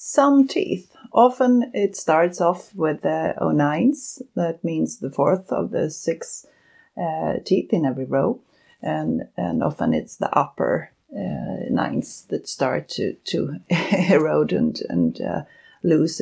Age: 30-49